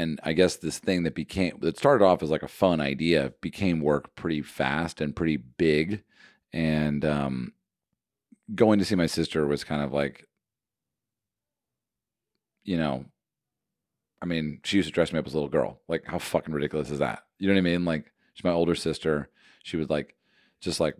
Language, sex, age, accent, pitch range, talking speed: English, male, 40-59, American, 75-90 Hz, 195 wpm